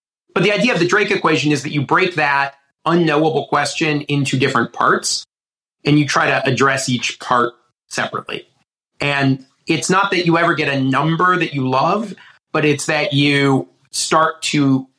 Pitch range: 135-170 Hz